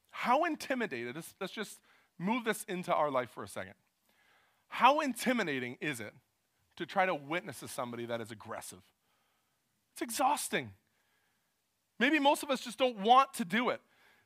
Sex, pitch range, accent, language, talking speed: male, 175-270 Hz, American, English, 155 wpm